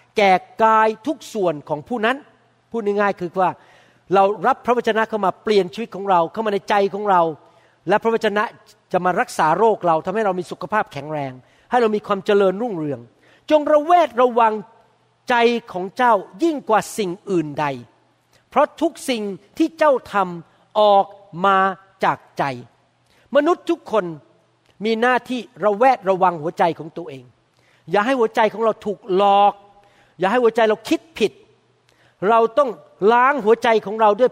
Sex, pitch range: male, 185-245 Hz